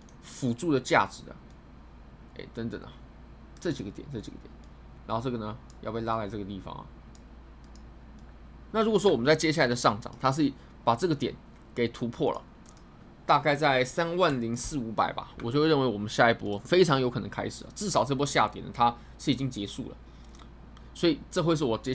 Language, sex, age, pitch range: Chinese, male, 20-39, 110-150 Hz